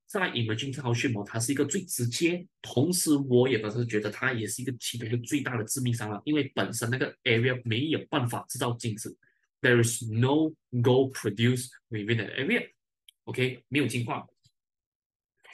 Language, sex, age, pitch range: Chinese, male, 20-39, 115-145 Hz